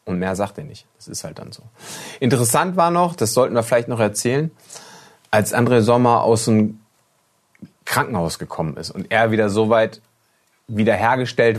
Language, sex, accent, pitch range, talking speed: German, male, German, 110-140 Hz, 170 wpm